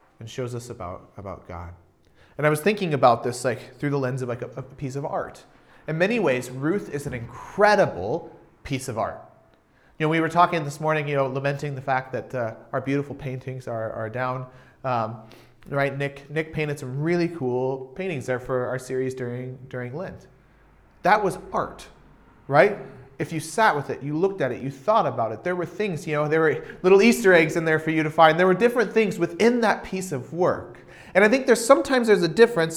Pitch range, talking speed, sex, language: 130-185 Hz, 220 wpm, male, English